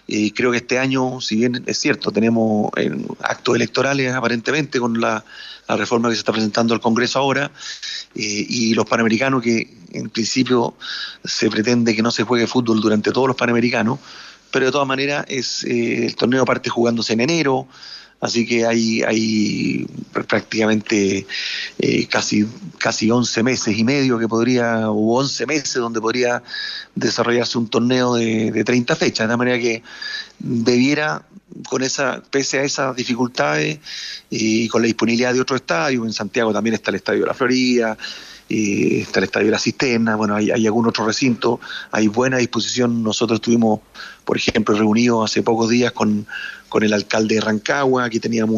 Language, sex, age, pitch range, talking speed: Spanish, male, 30-49, 110-125 Hz, 170 wpm